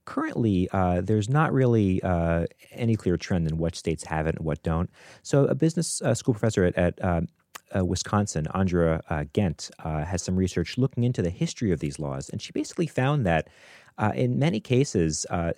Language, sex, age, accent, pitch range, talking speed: English, male, 30-49, American, 85-110 Hz, 195 wpm